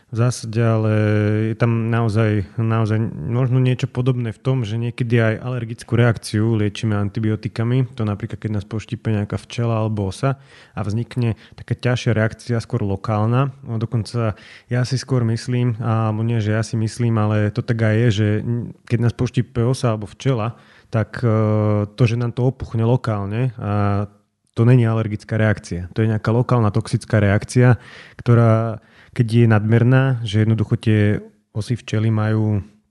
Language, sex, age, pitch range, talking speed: Slovak, male, 30-49, 110-125 Hz, 155 wpm